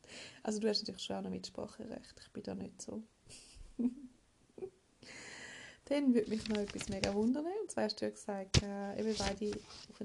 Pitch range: 200-250 Hz